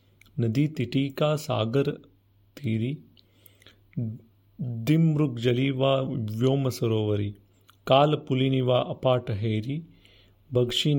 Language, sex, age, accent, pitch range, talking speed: Marathi, male, 40-59, native, 110-135 Hz, 65 wpm